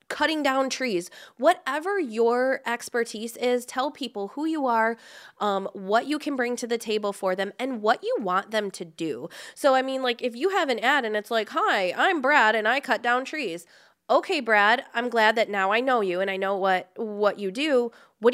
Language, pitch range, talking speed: English, 200-270 Hz, 215 wpm